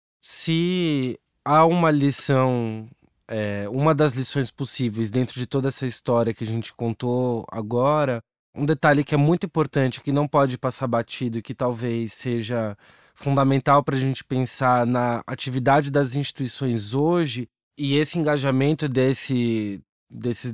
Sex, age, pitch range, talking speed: male, 20-39, 120-145 Hz, 135 wpm